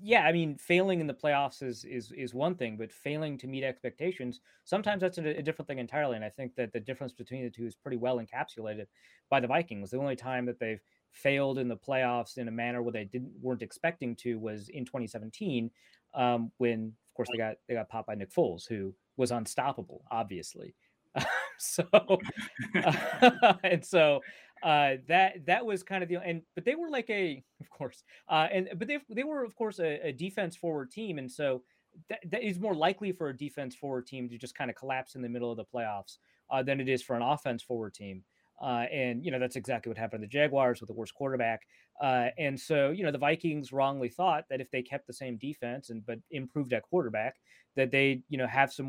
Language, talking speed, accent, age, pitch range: English, 225 wpm, American, 30-49, 120-160 Hz